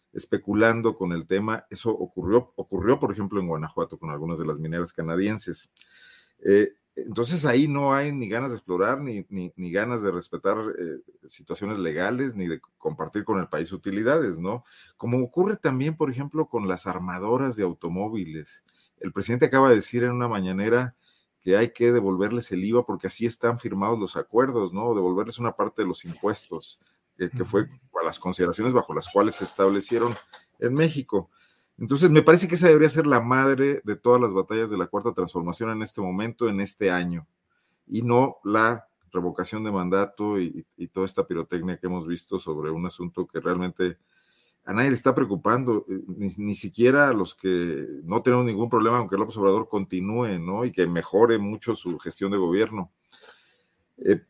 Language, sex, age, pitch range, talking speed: Spanish, male, 40-59, 95-125 Hz, 180 wpm